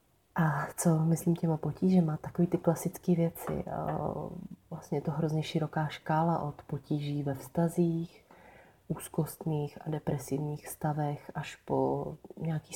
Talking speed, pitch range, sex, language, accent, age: 120 wpm, 145-165 Hz, female, Czech, native, 30-49